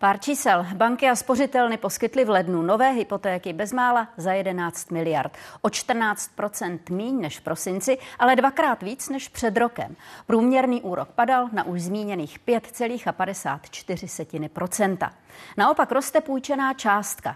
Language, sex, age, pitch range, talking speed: Czech, female, 30-49, 180-245 Hz, 130 wpm